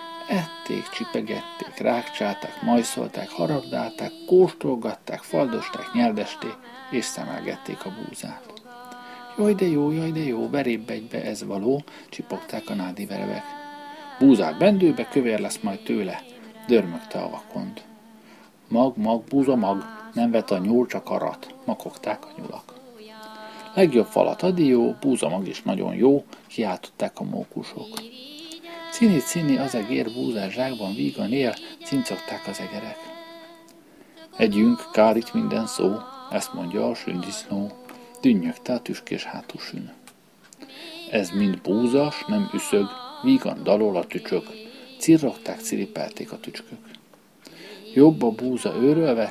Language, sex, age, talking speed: Hungarian, male, 50-69, 115 wpm